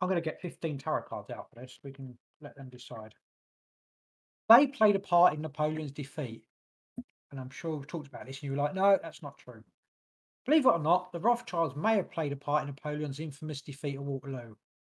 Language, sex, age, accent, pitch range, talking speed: English, male, 40-59, British, 140-165 Hz, 215 wpm